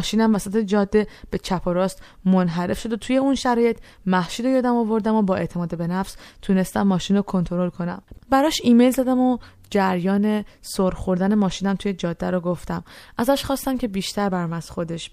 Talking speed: 175 wpm